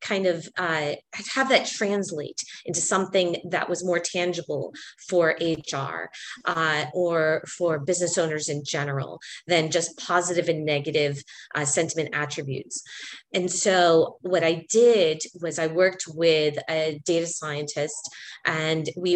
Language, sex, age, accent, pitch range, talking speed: English, female, 30-49, American, 155-185 Hz, 135 wpm